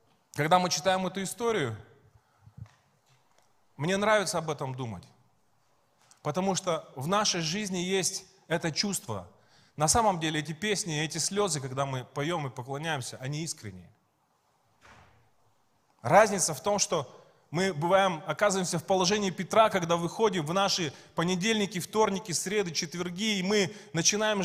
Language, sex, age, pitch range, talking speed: Russian, male, 20-39, 160-205 Hz, 130 wpm